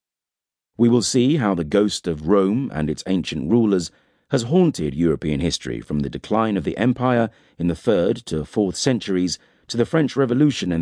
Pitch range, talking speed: 80-120 Hz, 185 wpm